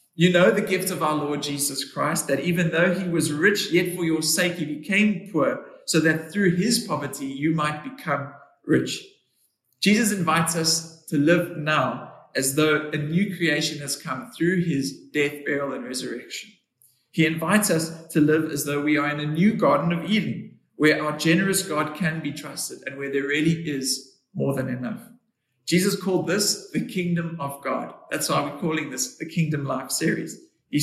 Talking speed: 190 wpm